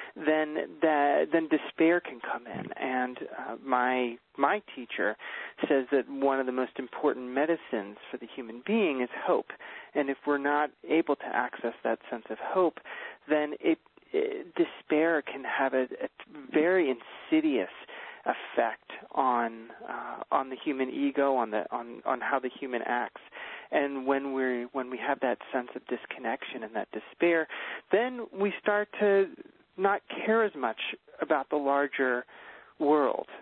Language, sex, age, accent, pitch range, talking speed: English, male, 30-49, American, 125-155 Hz, 155 wpm